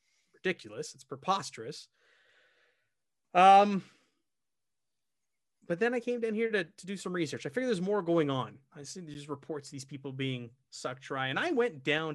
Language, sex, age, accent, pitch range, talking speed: English, male, 30-49, American, 130-195 Hz, 180 wpm